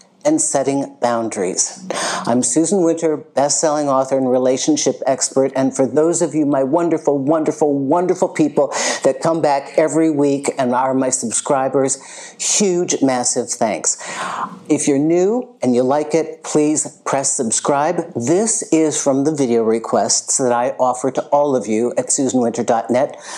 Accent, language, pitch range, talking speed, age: American, English, 130-160 Hz, 150 wpm, 50-69